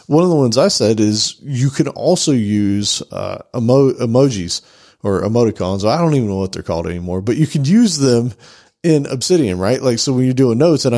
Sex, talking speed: male, 215 wpm